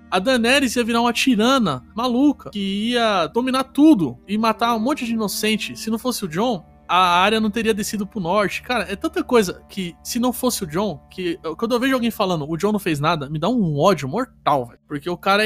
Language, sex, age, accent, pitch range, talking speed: Portuguese, male, 20-39, Brazilian, 165-230 Hz, 230 wpm